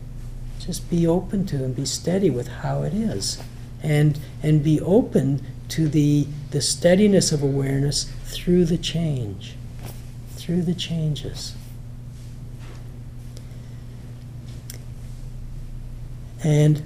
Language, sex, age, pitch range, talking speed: English, male, 60-79, 125-155 Hz, 100 wpm